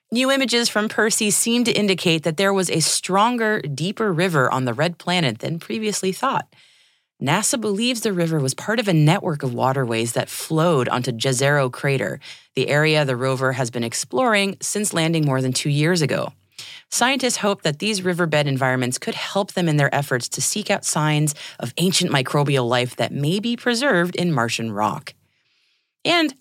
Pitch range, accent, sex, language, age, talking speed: 140-205 Hz, American, female, English, 30-49, 180 wpm